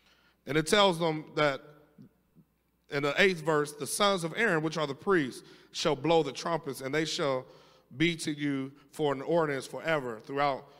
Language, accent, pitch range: English, American, 155-200 Hz